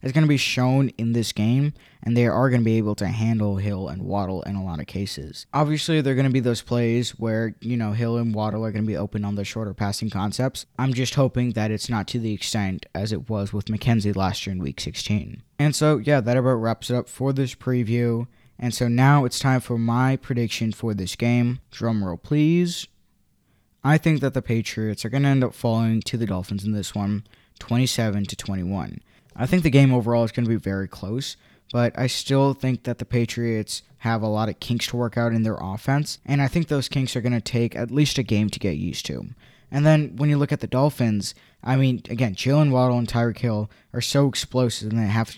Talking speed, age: 235 wpm, 20-39